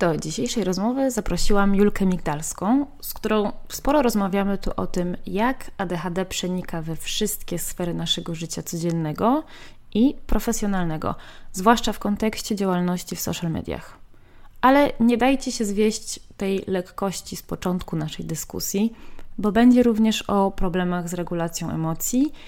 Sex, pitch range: female, 180-235 Hz